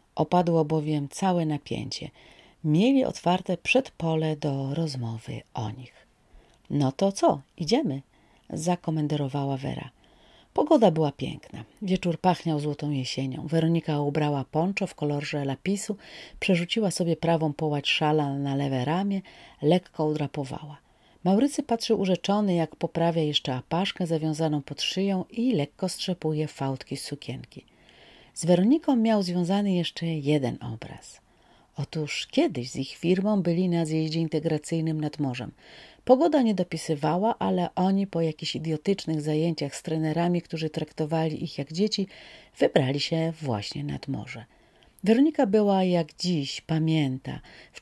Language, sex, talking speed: Polish, female, 130 wpm